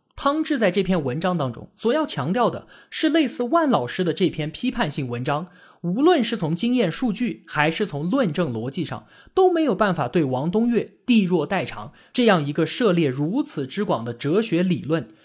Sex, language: male, Chinese